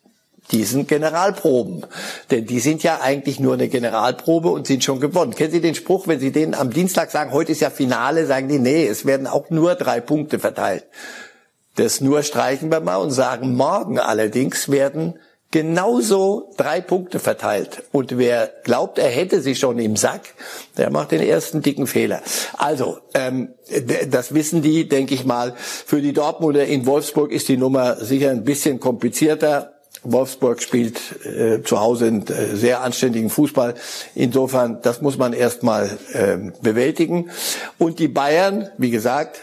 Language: German